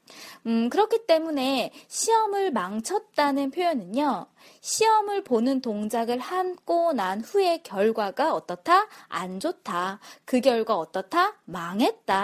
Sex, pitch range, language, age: female, 215-345 Hz, Korean, 20-39